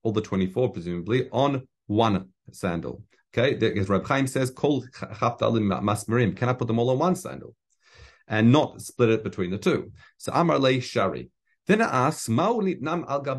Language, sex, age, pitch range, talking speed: English, male, 40-59, 105-150 Hz, 160 wpm